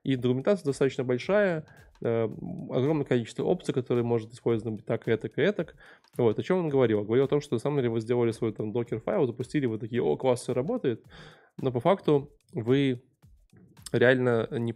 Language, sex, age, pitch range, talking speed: Russian, male, 20-39, 115-130 Hz, 185 wpm